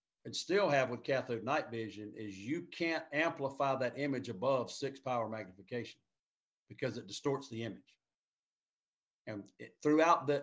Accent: American